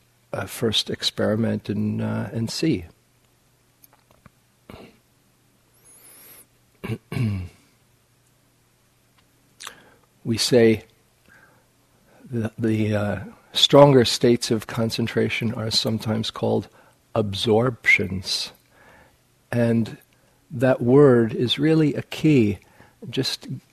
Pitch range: 105-125 Hz